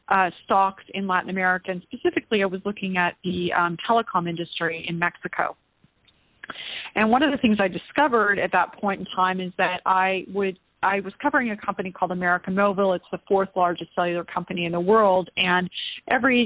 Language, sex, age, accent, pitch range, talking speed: English, female, 30-49, American, 180-210 Hz, 190 wpm